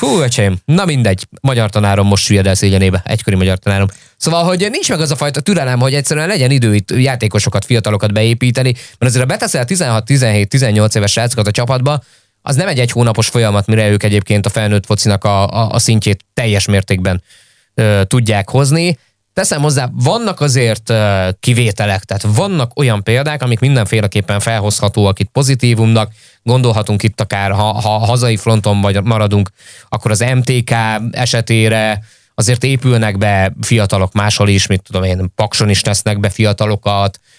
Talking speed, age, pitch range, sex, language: 160 wpm, 20-39, 105-125 Hz, male, Hungarian